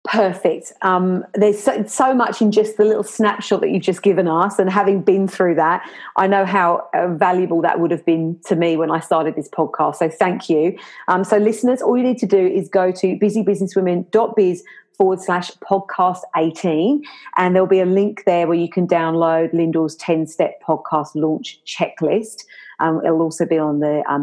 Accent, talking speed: British, 190 wpm